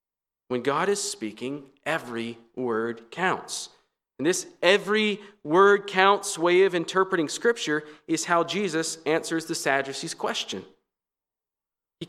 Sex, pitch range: male, 125-200 Hz